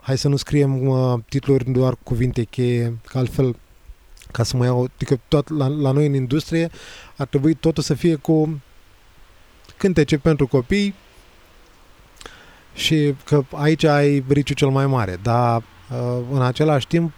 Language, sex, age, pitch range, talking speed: Romanian, male, 20-39, 125-150 Hz, 145 wpm